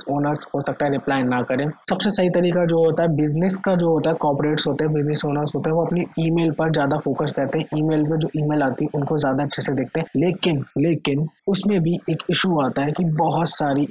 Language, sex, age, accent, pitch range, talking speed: Hindi, male, 20-39, native, 145-170 Hz, 120 wpm